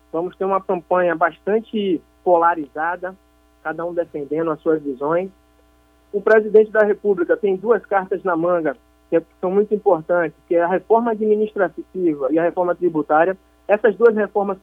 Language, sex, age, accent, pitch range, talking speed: Portuguese, male, 20-39, Brazilian, 160-210 Hz, 160 wpm